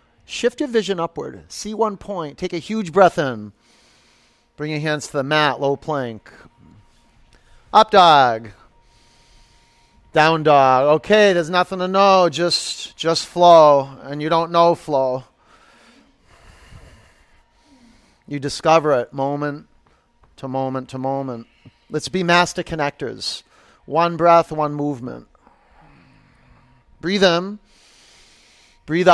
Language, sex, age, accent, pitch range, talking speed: English, male, 40-59, American, 120-170 Hz, 115 wpm